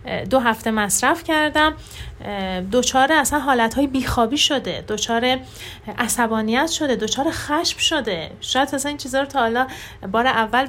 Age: 30-49